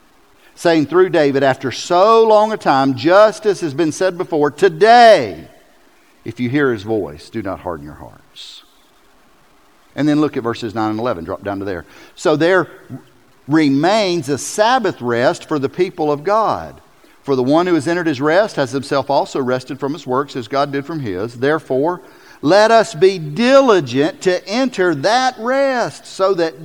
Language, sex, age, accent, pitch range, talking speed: English, male, 50-69, American, 125-200 Hz, 180 wpm